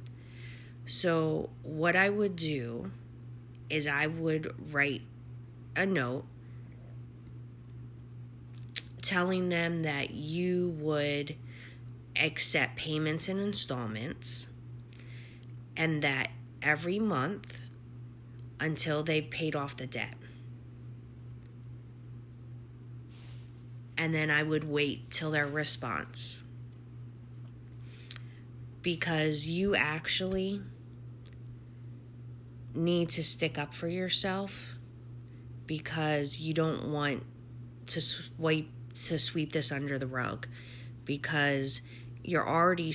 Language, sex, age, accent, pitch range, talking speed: English, female, 30-49, American, 120-150 Hz, 85 wpm